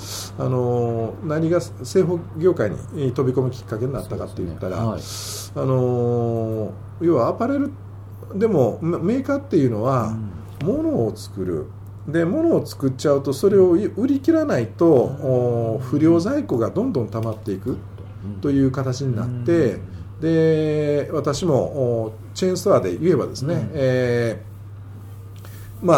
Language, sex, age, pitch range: Japanese, male, 50-69, 105-155 Hz